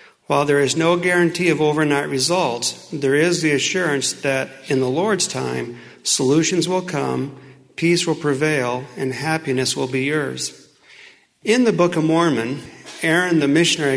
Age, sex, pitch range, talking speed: 50-69, male, 135-175 Hz, 155 wpm